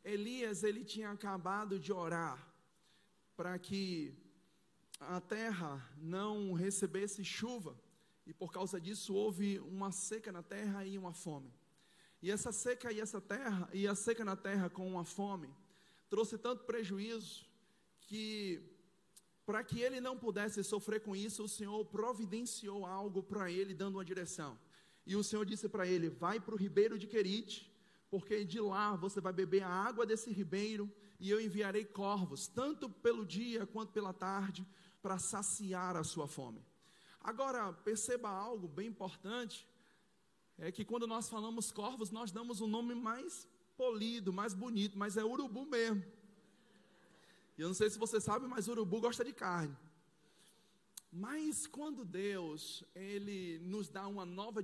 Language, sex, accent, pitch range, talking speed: Portuguese, male, Brazilian, 190-220 Hz, 155 wpm